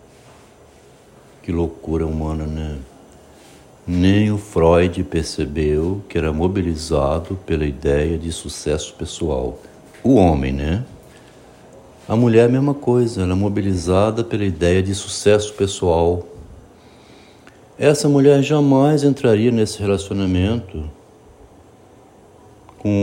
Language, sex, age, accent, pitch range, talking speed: Portuguese, male, 60-79, Brazilian, 85-115 Hz, 100 wpm